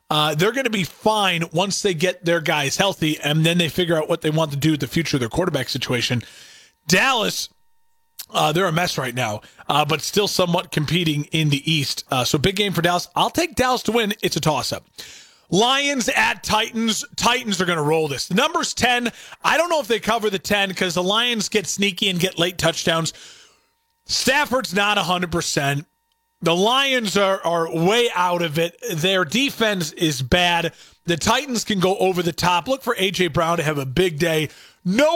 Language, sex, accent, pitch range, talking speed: English, male, American, 165-225 Hz, 205 wpm